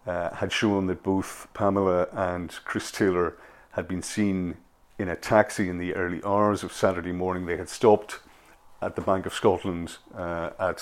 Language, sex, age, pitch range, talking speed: English, male, 50-69, 90-105 Hz, 175 wpm